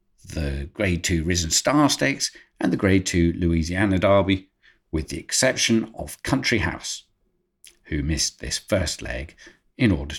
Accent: British